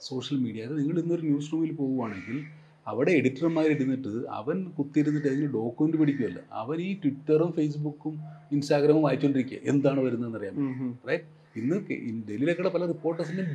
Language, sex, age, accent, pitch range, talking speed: Malayalam, male, 30-49, native, 130-155 Hz, 135 wpm